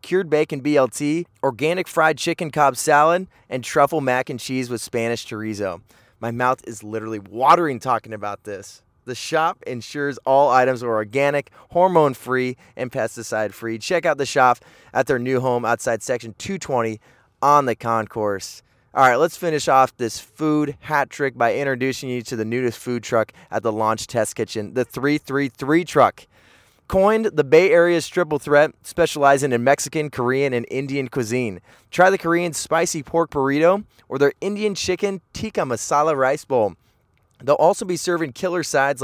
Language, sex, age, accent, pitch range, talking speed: English, male, 20-39, American, 120-155 Hz, 160 wpm